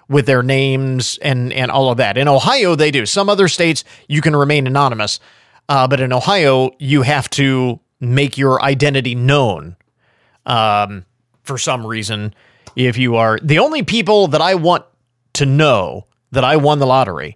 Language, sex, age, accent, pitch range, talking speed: English, male, 40-59, American, 130-170 Hz, 175 wpm